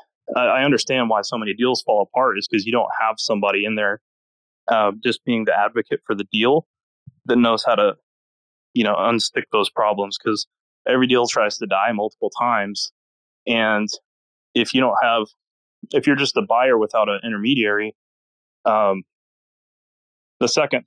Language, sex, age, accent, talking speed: English, male, 20-39, American, 165 wpm